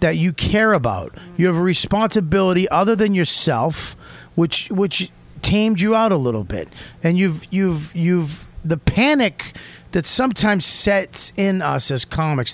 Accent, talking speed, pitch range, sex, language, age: American, 155 wpm, 150-185 Hz, male, English, 30-49